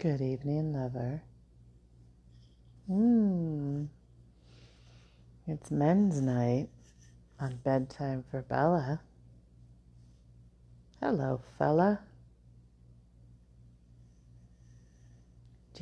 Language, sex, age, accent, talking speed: English, female, 40-59, American, 55 wpm